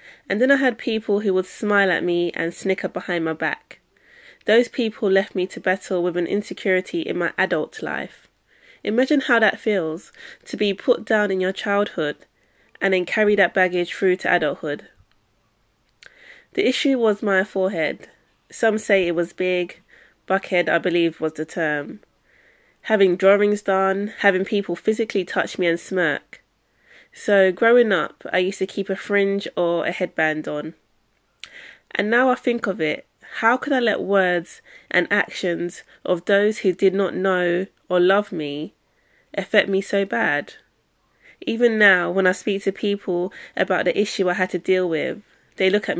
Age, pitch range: 20-39, 180-215 Hz